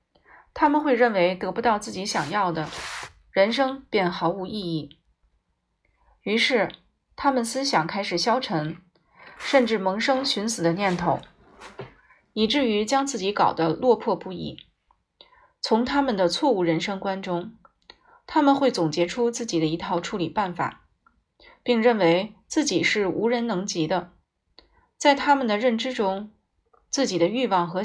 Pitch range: 175-250 Hz